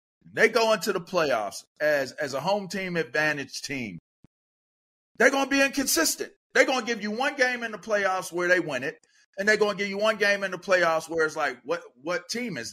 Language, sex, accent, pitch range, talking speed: English, male, American, 160-225 Hz, 230 wpm